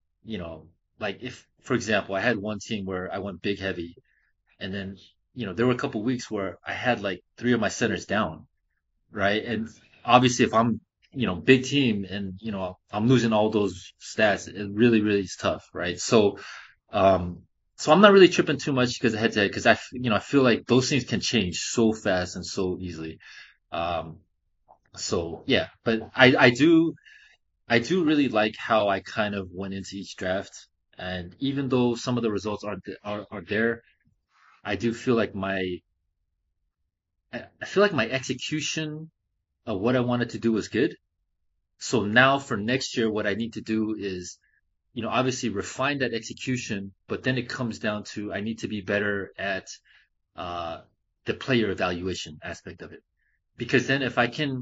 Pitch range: 95-125 Hz